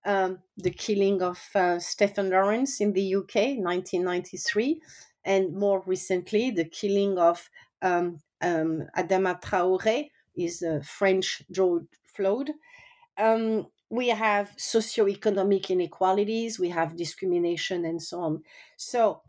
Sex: female